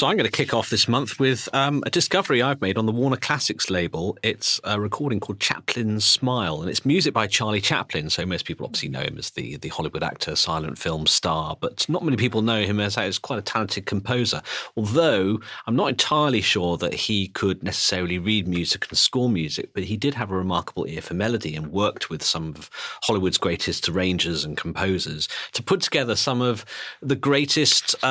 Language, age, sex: English, 40-59, male